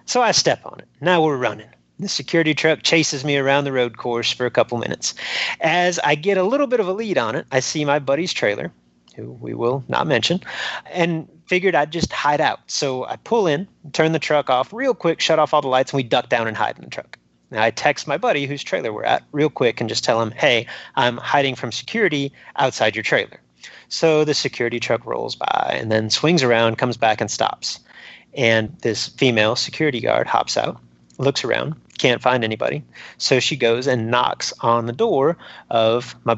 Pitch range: 120-165 Hz